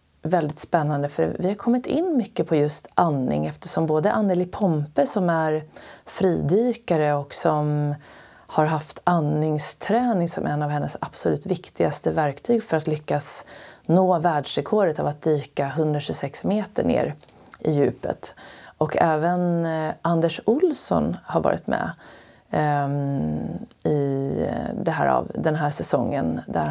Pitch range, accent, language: 150-185 Hz, native, Swedish